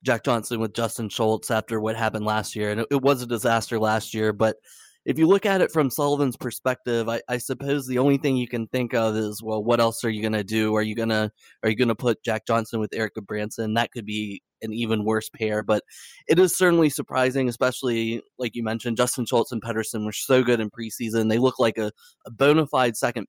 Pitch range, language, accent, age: 110-130 Hz, English, American, 20-39